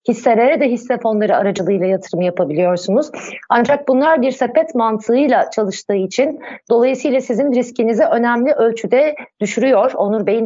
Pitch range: 200-250 Hz